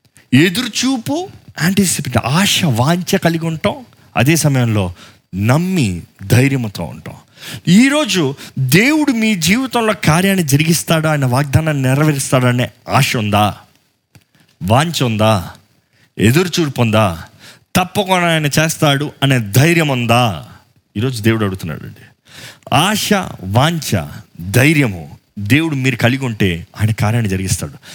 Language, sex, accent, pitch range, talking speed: Telugu, male, native, 120-170 Hz, 95 wpm